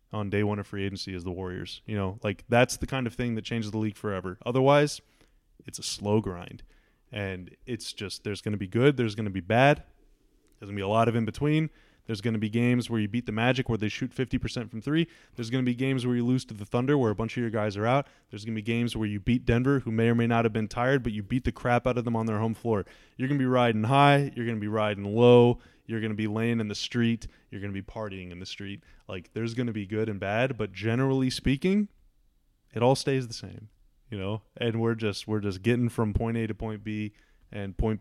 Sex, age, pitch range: male, 20-39, 105-130 Hz